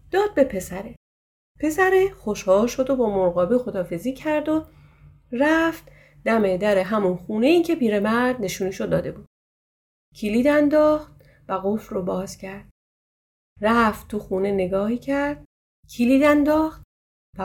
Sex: female